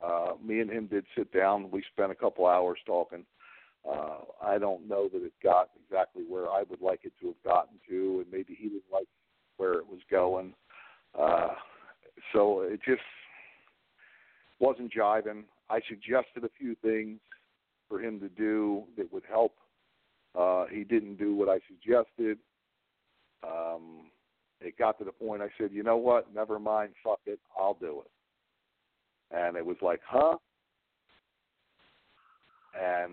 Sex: male